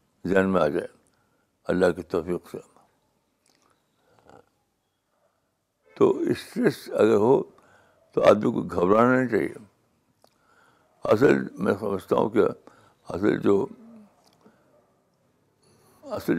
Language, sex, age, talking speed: Urdu, male, 60-79, 90 wpm